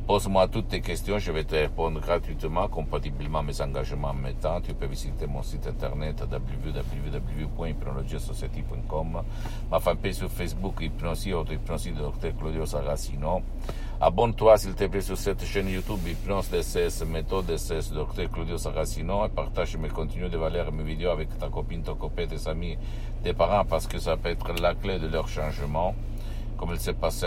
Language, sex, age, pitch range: Italian, male, 60-79, 75-95 Hz